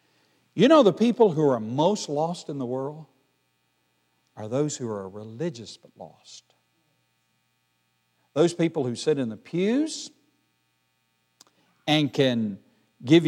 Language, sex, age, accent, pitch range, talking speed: English, male, 60-79, American, 115-185 Hz, 125 wpm